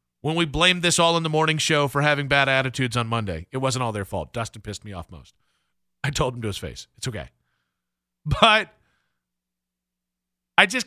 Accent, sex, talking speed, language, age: American, male, 200 wpm, English, 40-59